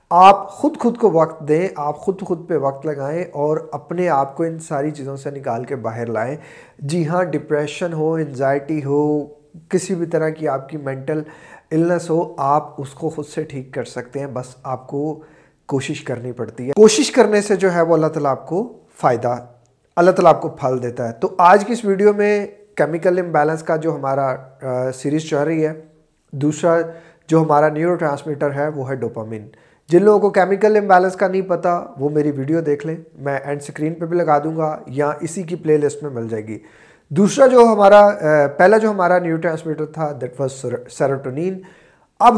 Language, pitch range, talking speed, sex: Urdu, 140-180 Hz, 200 wpm, male